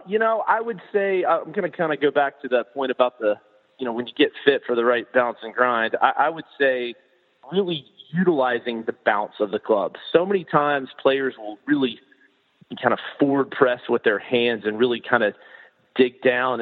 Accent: American